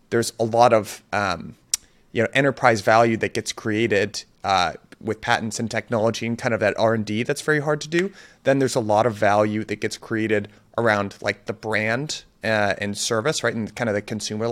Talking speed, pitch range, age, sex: 205 wpm, 105-120 Hz, 30-49, male